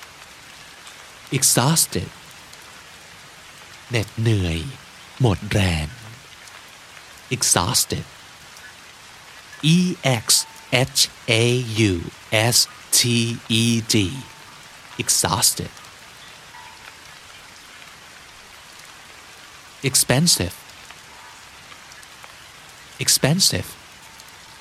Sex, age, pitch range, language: male, 50-69, 90-135 Hz, Thai